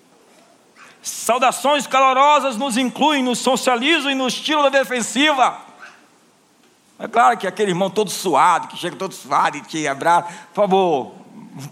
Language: Portuguese